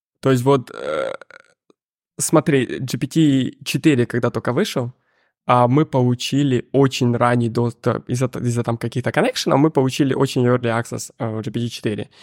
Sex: male